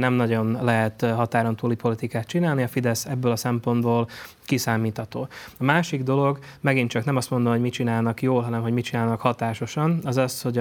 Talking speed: 185 wpm